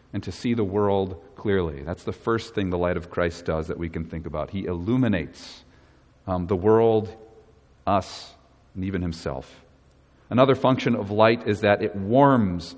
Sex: male